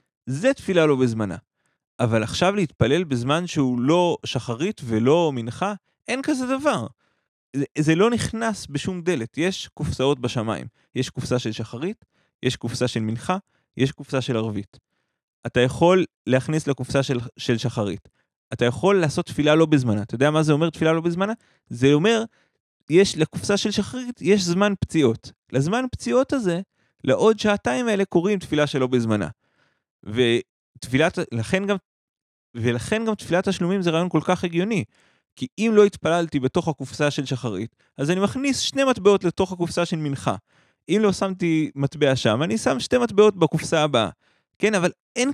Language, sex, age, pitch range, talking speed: Hebrew, male, 30-49, 130-190 Hz, 160 wpm